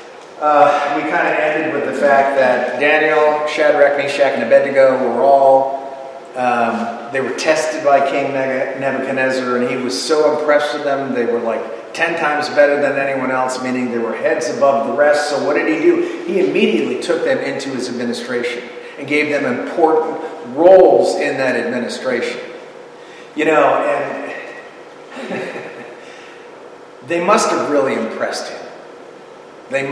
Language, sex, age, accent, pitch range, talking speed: English, male, 40-59, American, 130-170 Hz, 150 wpm